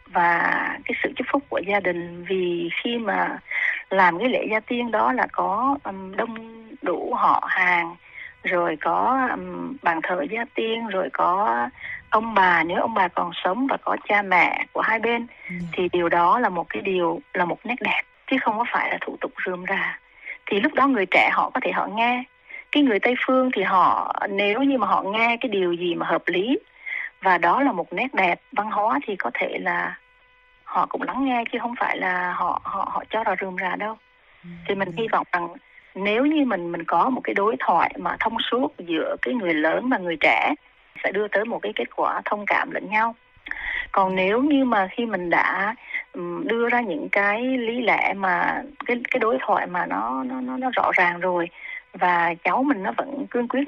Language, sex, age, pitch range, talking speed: Vietnamese, female, 20-39, 180-260 Hz, 210 wpm